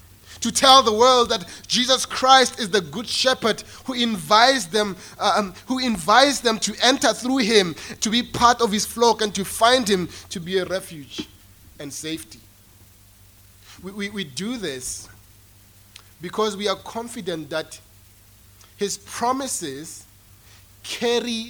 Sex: male